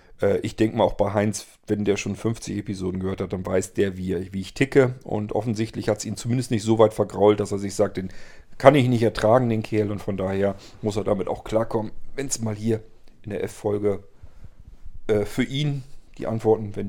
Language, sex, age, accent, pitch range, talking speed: German, male, 40-59, German, 105-135 Hz, 215 wpm